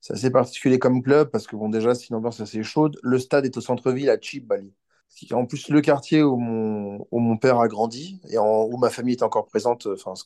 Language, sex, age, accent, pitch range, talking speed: French, male, 30-49, French, 115-135 Hz, 255 wpm